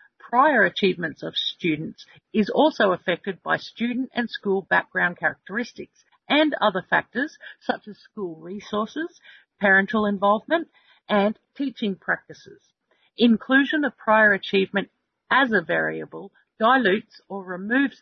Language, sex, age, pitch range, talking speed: English, female, 50-69, 190-255 Hz, 115 wpm